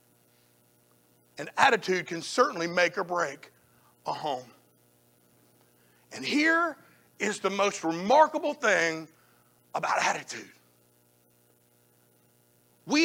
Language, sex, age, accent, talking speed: English, male, 50-69, American, 85 wpm